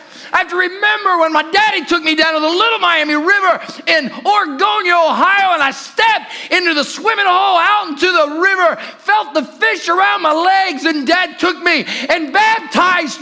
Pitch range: 265-355 Hz